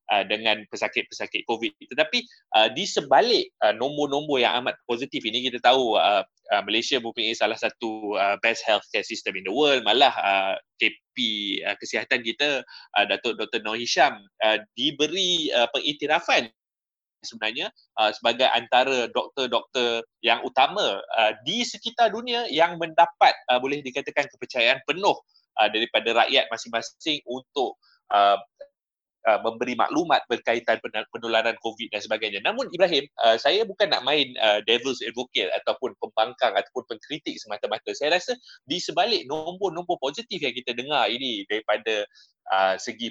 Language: Malay